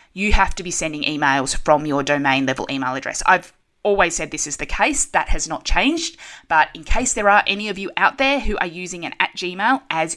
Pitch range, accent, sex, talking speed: 155-195 Hz, Australian, female, 230 wpm